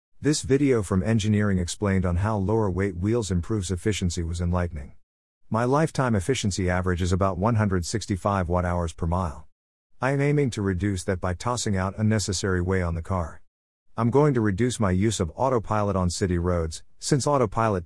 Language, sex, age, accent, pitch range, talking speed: English, male, 50-69, American, 85-110 Hz, 175 wpm